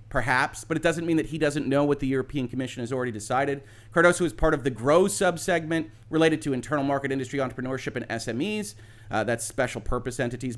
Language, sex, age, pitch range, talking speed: English, male, 30-49, 120-160 Hz, 205 wpm